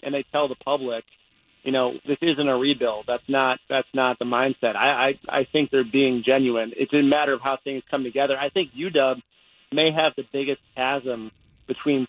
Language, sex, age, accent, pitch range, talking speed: English, male, 30-49, American, 125-145 Hz, 205 wpm